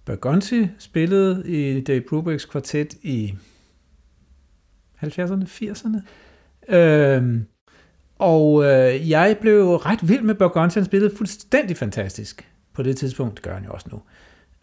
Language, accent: Danish, native